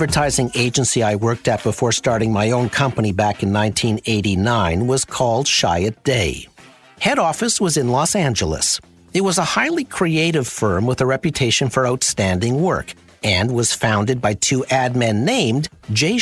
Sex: male